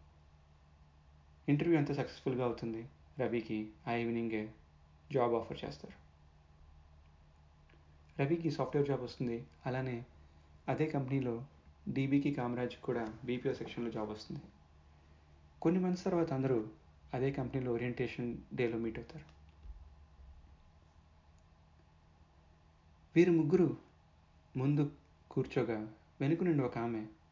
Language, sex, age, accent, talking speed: Telugu, male, 30-49, native, 85 wpm